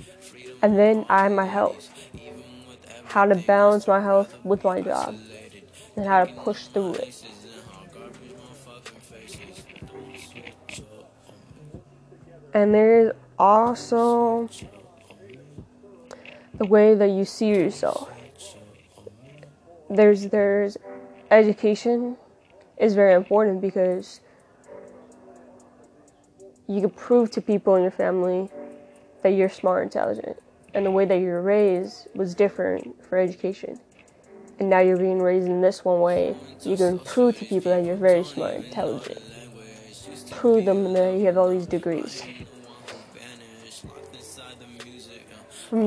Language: English